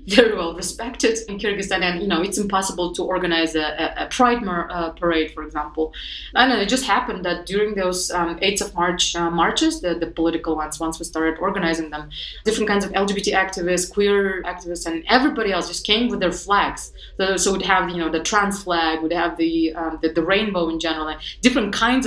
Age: 20-39